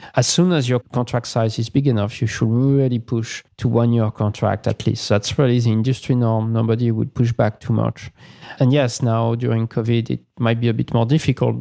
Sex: male